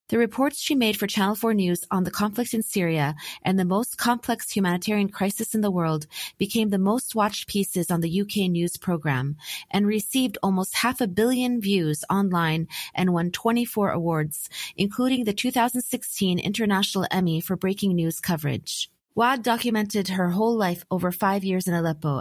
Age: 30-49